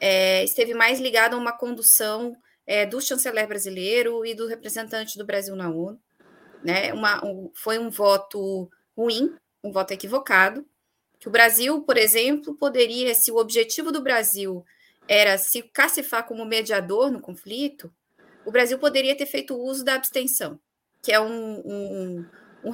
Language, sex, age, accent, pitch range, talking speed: Portuguese, female, 20-39, Brazilian, 220-285 Hz, 145 wpm